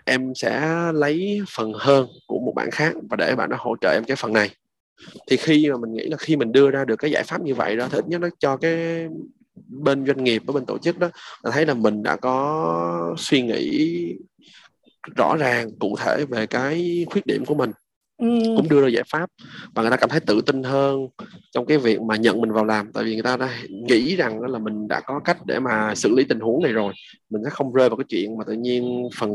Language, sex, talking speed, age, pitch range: Vietnamese, male, 245 wpm, 20-39, 110-150 Hz